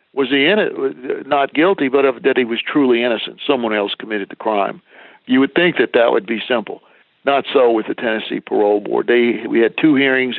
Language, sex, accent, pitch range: English, male, American, 120-145 Hz